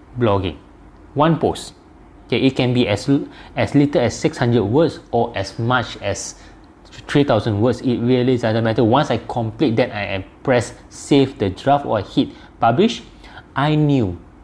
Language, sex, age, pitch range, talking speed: English, male, 20-39, 105-140 Hz, 155 wpm